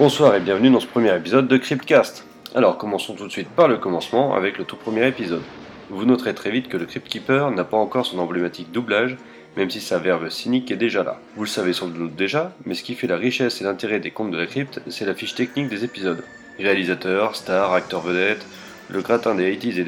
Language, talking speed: French, 230 wpm